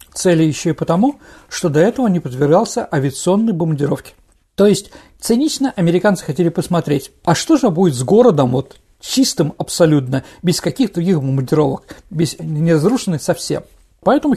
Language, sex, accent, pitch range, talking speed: Russian, male, native, 165-235 Hz, 140 wpm